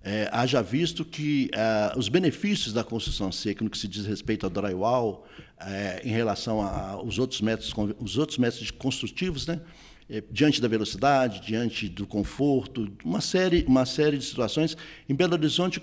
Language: Portuguese